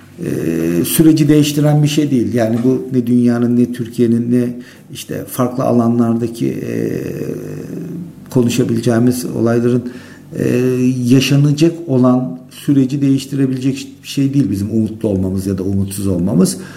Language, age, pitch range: Turkish, 60-79, 120-160 Hz